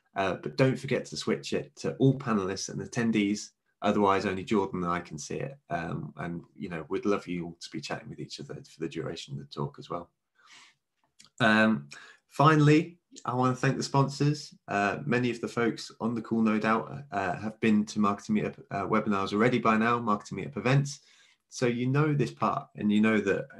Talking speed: 210 wpm